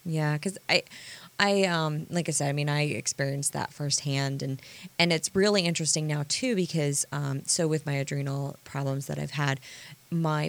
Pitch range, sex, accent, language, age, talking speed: 140-165 Hz, female, American, English, 20-39, 185 wpm